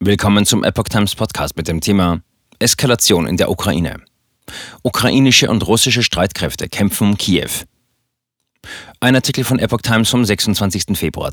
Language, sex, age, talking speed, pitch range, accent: German, male, 40-59, 145 wpm, 90-115 Hz, German